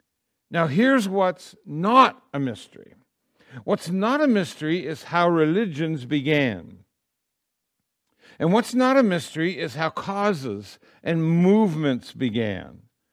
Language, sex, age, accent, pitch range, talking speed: English, male, 60-79, American, 145-205 Hz, 115 wpm